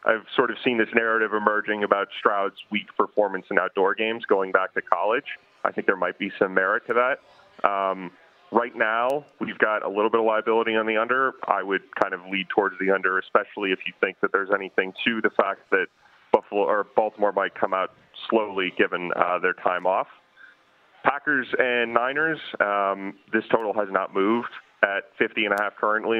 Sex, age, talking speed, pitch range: male, 30-49, 190 wpm, 95-110 Hz